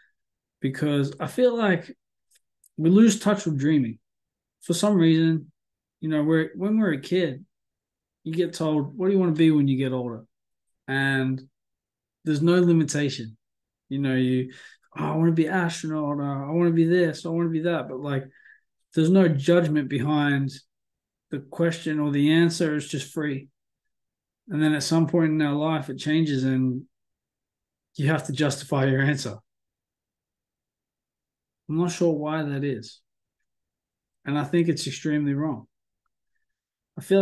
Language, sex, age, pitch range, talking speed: English, male, 20-39, 130-165 Hz, 160 wpm